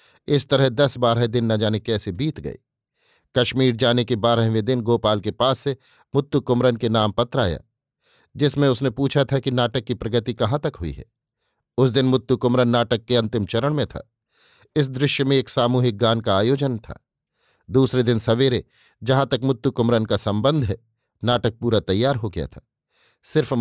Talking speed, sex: 185 wpm, male